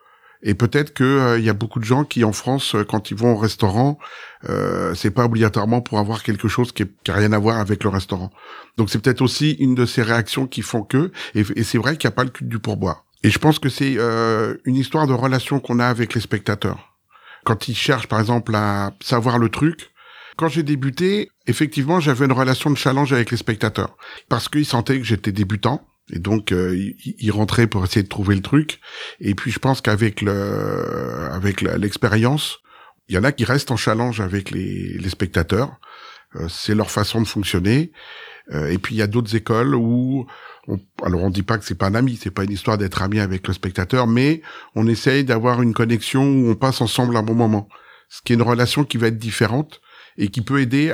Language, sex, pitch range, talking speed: French, male, 105-130 Hz, 230 wpm